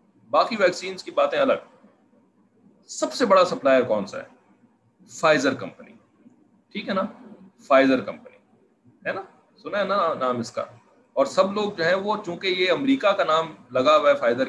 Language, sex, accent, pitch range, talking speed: English, male, Indian, 180-260 Hz, 165 wpm